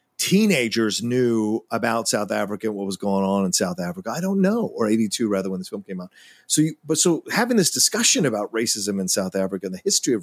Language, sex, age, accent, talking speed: English, male, 40-59, American, 235 wpm